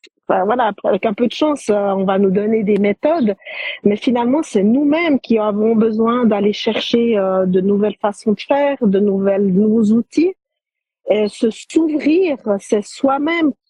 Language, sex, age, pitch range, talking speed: French, female, 50-69, 205-250 Hz, 160 wpm